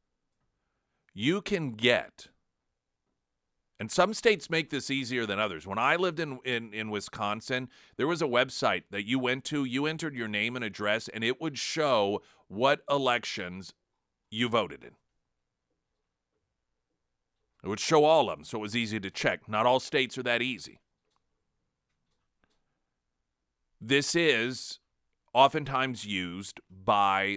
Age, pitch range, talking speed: 40-59, 95-125 Hz, 140 wpm